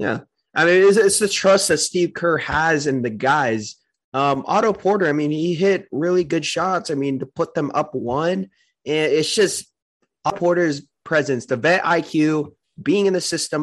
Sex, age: male, 20-39